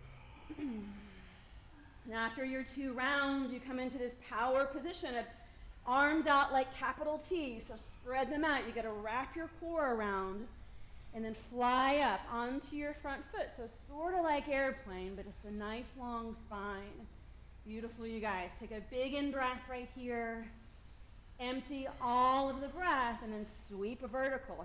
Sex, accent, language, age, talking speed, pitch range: female, American, English, 30-49, 160 wpm, 220-280 Hz